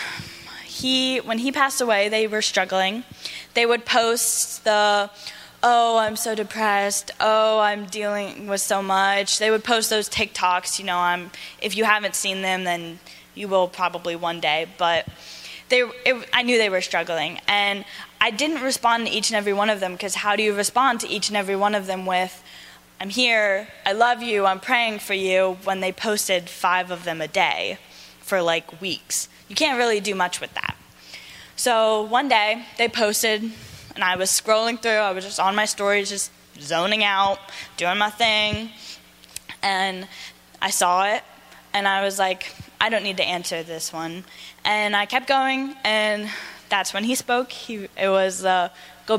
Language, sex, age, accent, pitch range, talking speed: English, female, 10-29, American, 185-225 Hz, 185 wpm